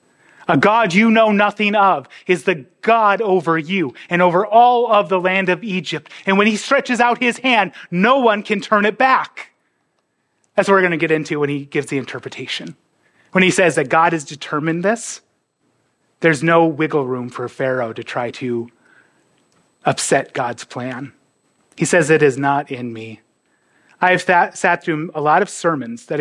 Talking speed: 185 wpm